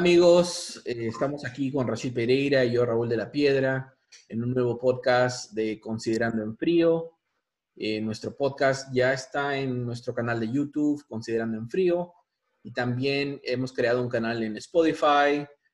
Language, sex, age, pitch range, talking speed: Spanish, male, 30-49, 110-135 Hz, 160 wpm